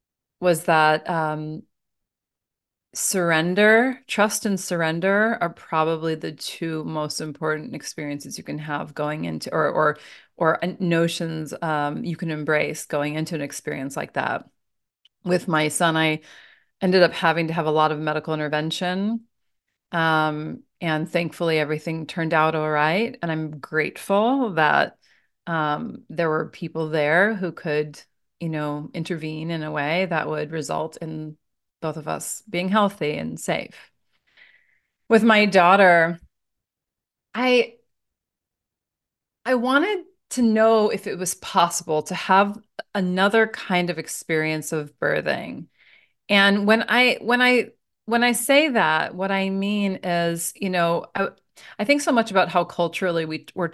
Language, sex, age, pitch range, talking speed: English, female, 30-49, 155-195 Hz, 145 wpm